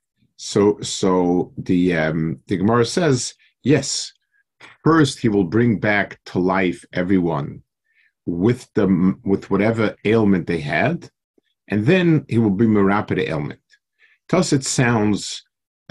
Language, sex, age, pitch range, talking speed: English, male, 50-69, 95-130 Hz, 130 wpm